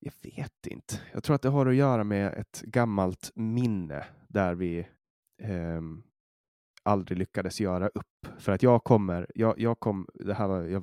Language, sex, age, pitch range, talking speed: Swedish, male, 20-39, 90-105 Hz, 175 wpm